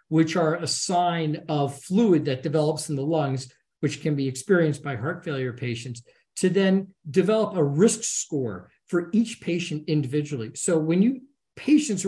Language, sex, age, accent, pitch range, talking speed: English, male, 50-69, American, 140-185 Hz, 165 wpm